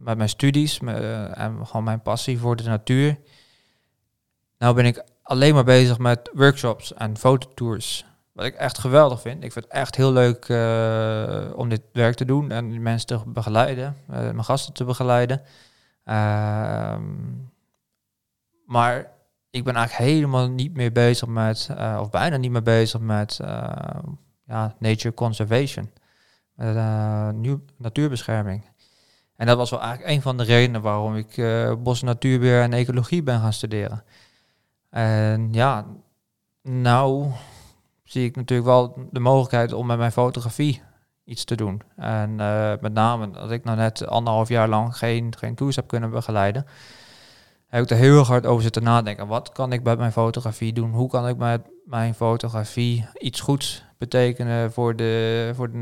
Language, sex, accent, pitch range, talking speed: Dutch, male, Dutch, 110-130 Hz, 160 wpm